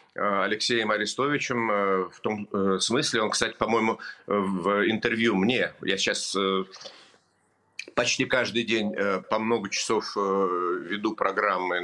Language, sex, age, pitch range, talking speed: English, male, 50-69, 95-115 Hz, 105 wpm